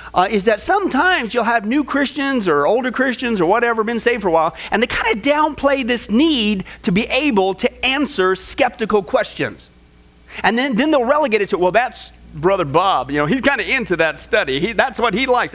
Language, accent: English, American